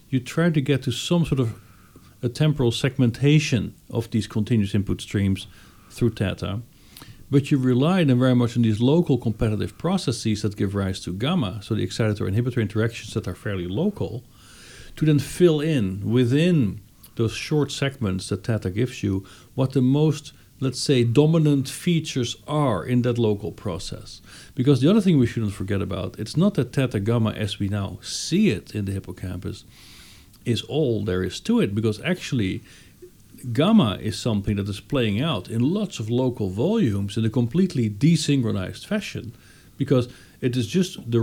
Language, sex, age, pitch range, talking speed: English, male, 50-69, 105-135 Hz, 170 wpm